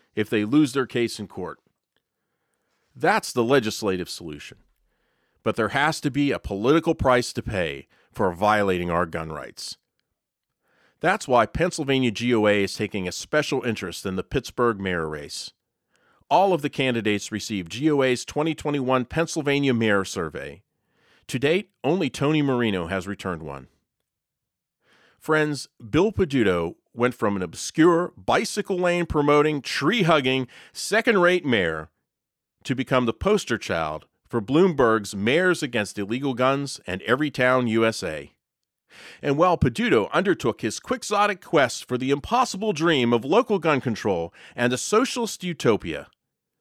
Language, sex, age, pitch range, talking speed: English, male, 40-59, 100-155 Hz, 140 wpm